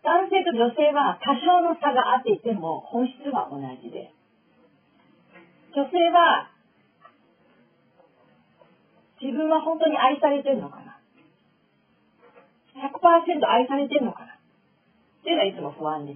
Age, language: 40-59, Japanese